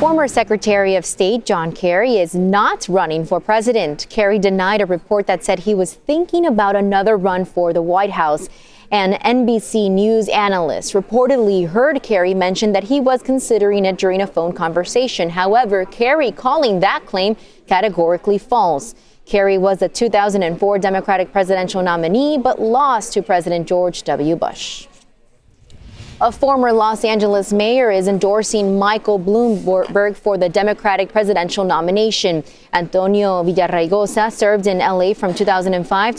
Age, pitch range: 20-39, 185-225 Hz